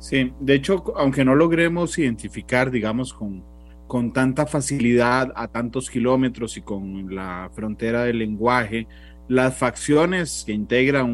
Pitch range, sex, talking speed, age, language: 110-145 Hz, male, 135 wpm, 30-49, Spanish